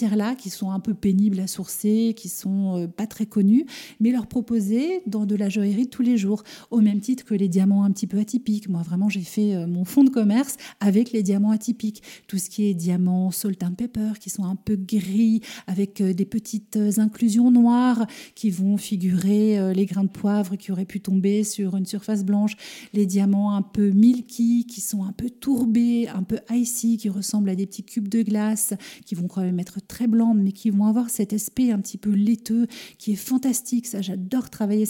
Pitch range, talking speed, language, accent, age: 200-230 Hz, 210 wpm, French, French, 40-59